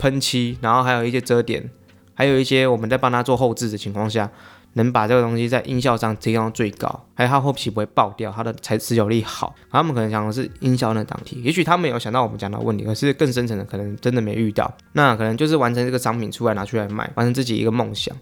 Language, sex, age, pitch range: Chinese, male, 20-39, 110-135 Hz